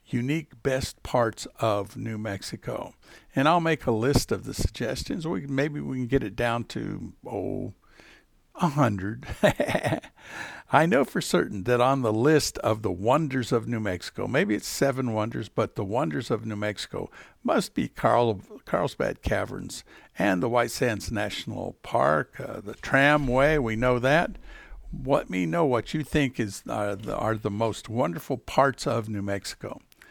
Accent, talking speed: American, 165 wpm